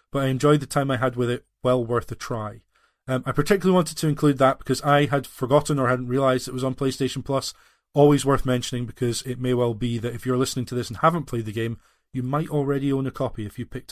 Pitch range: 120-145 Hz